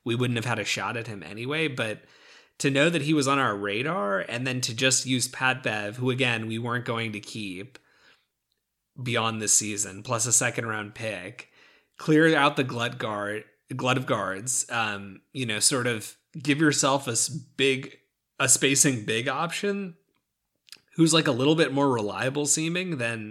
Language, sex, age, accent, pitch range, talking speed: English, male, 30-49, American, 110-140 Hz, 180 wpm